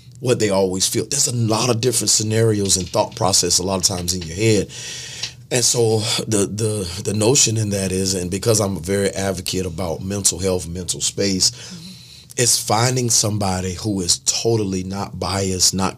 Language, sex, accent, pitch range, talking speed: English, male, American, 95-115 Hz, 185 wpm